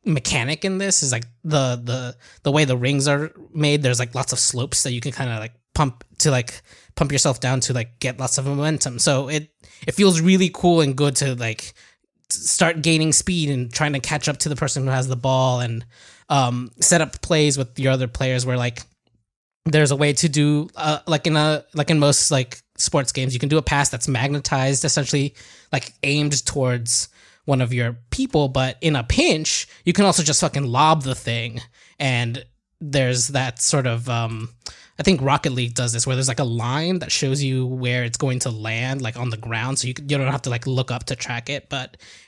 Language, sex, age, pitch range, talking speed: English, male, 20-39, 125-150 Hz, 225 wpm